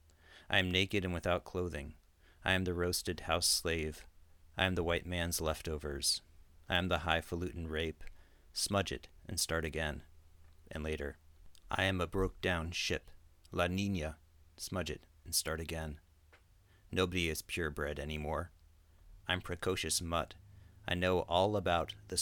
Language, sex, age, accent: English, male, 40-59, American